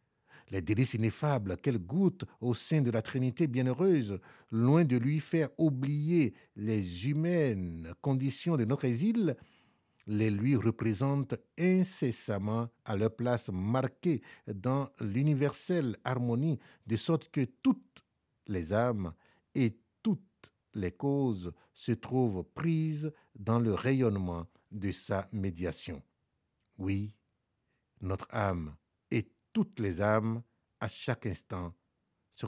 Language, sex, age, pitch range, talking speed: French, male, 60-79, 95-135 Hz, 115 wpm